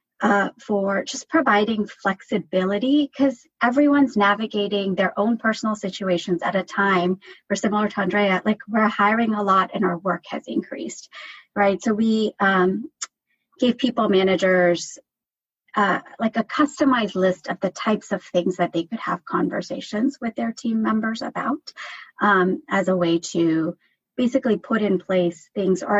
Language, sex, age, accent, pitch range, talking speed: English, female, 30-49, American, 190-230 Hz, 155 wpm